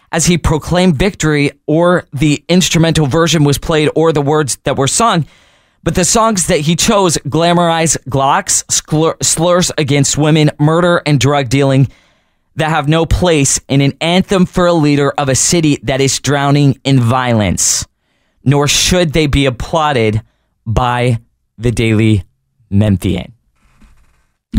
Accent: American